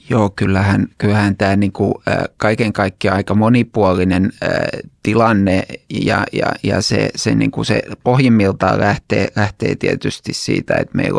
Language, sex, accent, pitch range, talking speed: Finnish, male, native, 100-115 Hz, 140 wpm